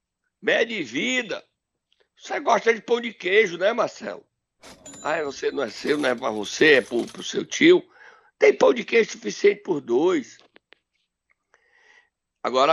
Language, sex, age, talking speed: Portuguese, male, 60-79, 150 wpm